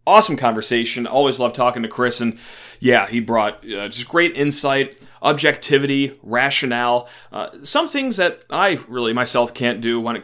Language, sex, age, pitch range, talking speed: English, male, 30-49, 120-150 Hz, 165 wpm